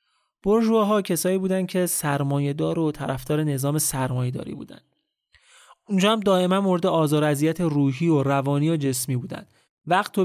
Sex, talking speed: male, 145 wpm